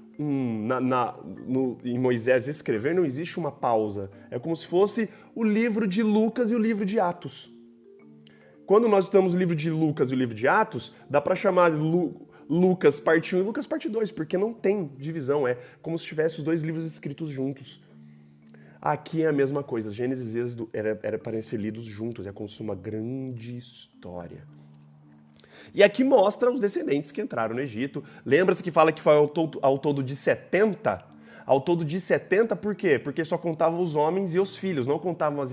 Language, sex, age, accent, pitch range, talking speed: Portuguese, male, 20-39, Brazilian, 105-175 Hz, 200 wpm